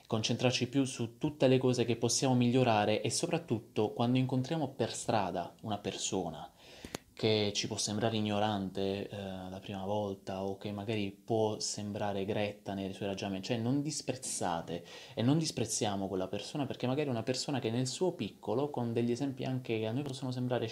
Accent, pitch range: native, 100-125 Hz